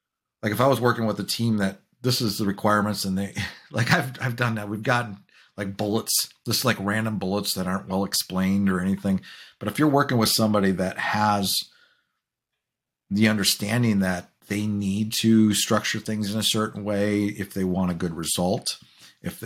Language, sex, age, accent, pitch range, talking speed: English, male, 50-69, American, 95-110 Hz, 190 wpm